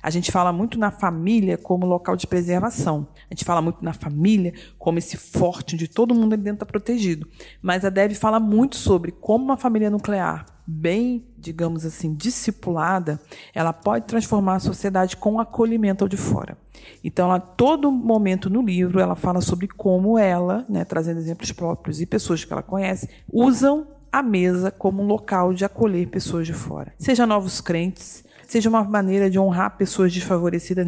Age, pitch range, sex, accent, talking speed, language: 40-59, 170-215 Hz, female, Brazilian, 180 wpm, Portuguese